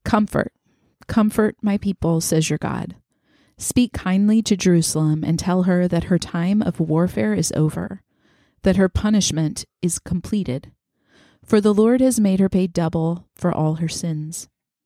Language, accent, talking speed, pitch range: English, American, 155 wpm, 160-200 Hz